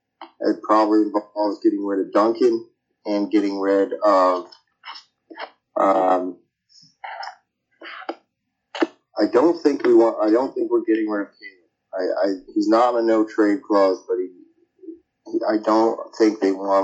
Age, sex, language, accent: 30-49, male, English, American